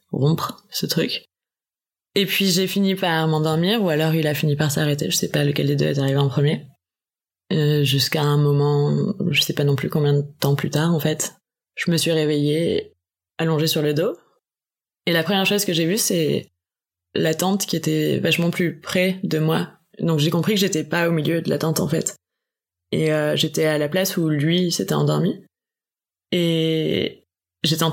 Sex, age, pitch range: female, 20-39, 150-180 Hz